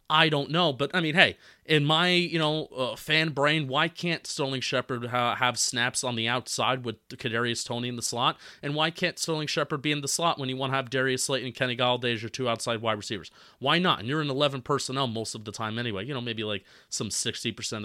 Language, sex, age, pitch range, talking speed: English, male, 30-49, 115-145 Hz, 245 wpm